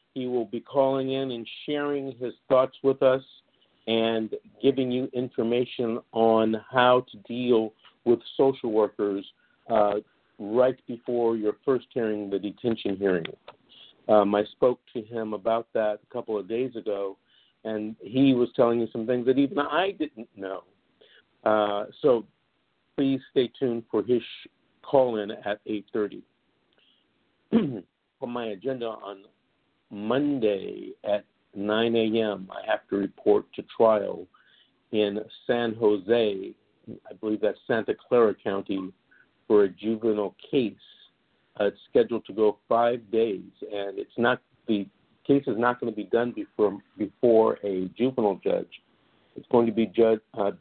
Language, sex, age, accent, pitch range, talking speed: English, male, 50-69, American, 105-125 Hz, 145 wpm